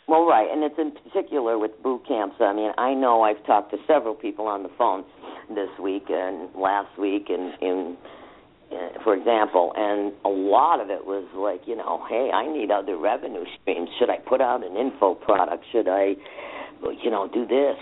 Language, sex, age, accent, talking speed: English, female, 50-69, American, 200 wpm